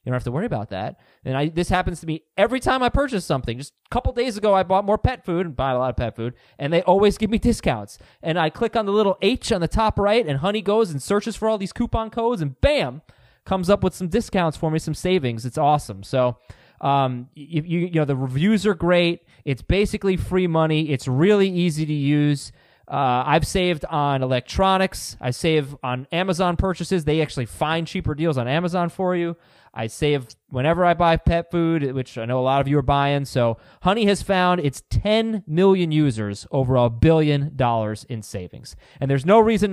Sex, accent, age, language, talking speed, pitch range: male, American, 20-39, English, 220 wpm, 140-195 Hz